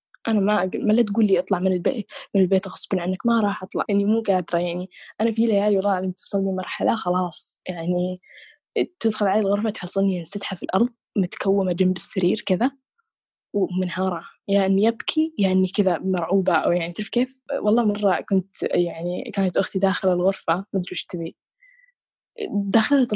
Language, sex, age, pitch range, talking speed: Arabic, female, 10-29, 185-220 Hz, 170 wpm